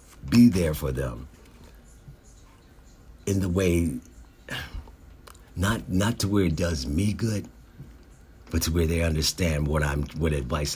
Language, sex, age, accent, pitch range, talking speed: English, male, 50-69, American, 75-95 Hz, 135 wpm